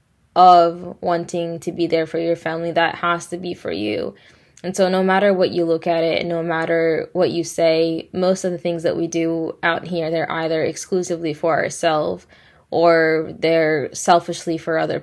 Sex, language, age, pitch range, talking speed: female, English, 10-29, 165-175 Hz, 190 wpm